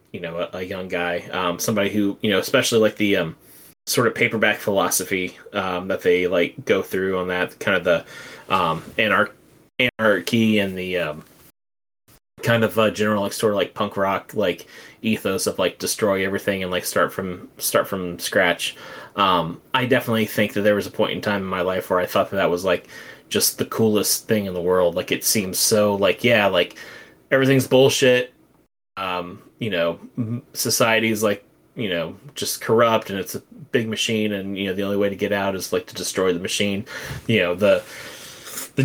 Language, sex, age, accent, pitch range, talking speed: English, male, 20-39, American, 90-110 Hz, 200 wpm